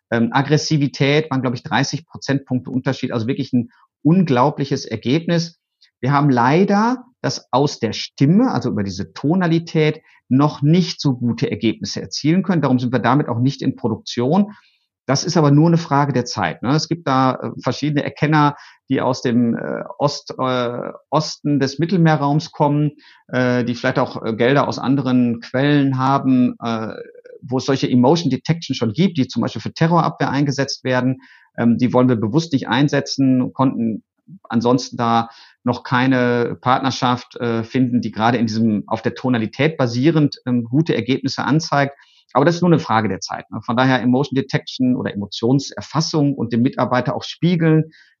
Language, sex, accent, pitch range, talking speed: German, male, German, 125-150 Hz, 165 wpm